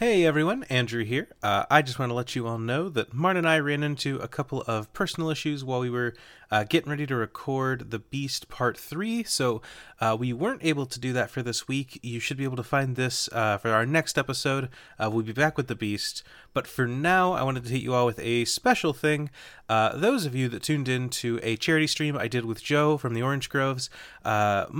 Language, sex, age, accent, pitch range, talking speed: English, male, 30-49, American, 120-155 Hz, 240 wpm